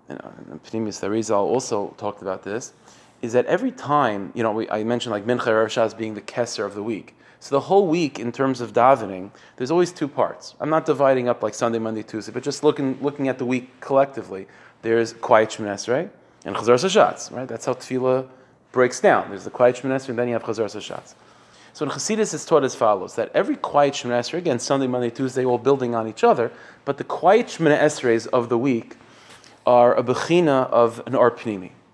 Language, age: English, 30-49